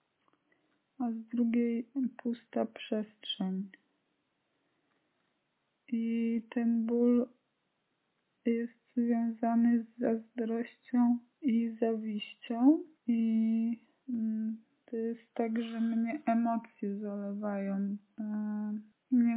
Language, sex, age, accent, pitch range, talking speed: Polish, female, 20-39, native, 225-245 Hz, 70 wpm